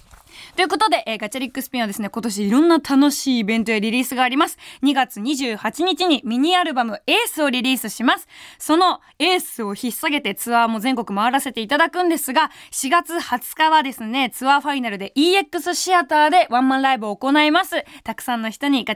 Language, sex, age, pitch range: Japanese, female, 20-39, 245-345 Hz